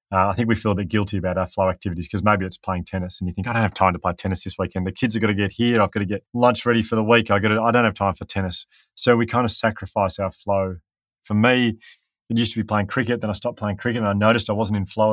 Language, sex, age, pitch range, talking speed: English, male, 30-49, 95-115 Hz, 315 wpm